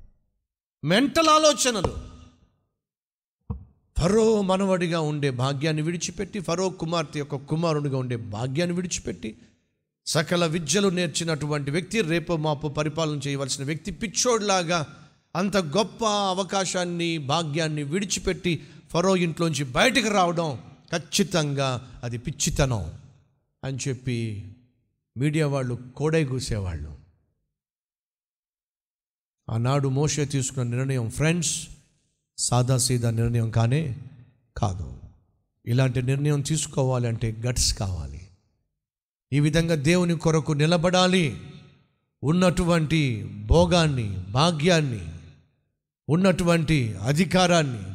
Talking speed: 85 wpm